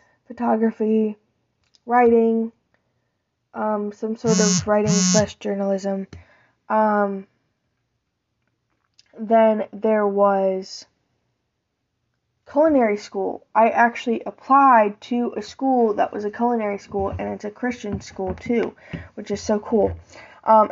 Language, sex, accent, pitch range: English, female, American, 200-225 Hz